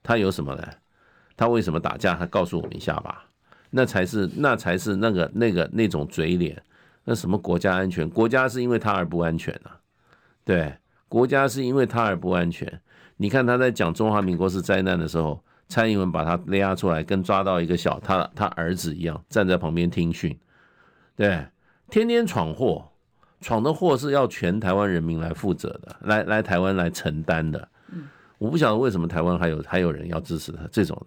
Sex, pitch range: male, 85-115 Hz